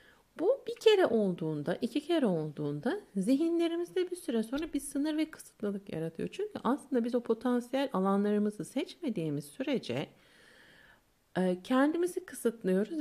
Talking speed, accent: 120 wpm, native